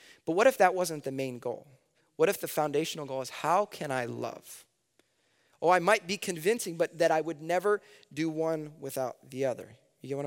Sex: male